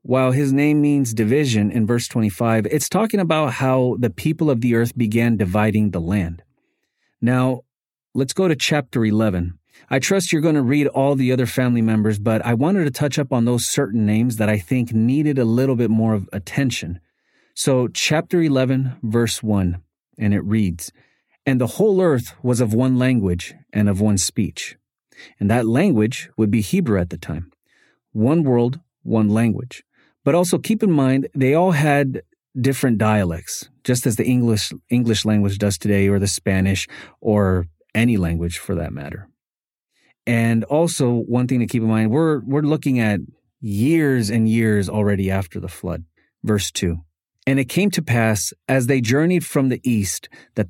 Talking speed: 180 wpm